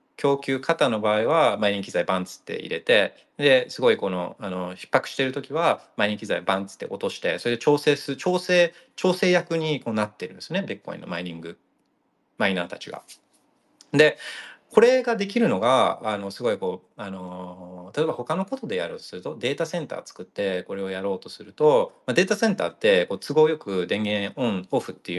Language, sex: Japanese, male